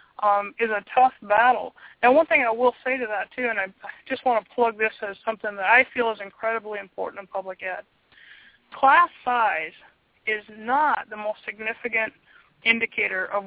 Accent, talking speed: American, 185 wpm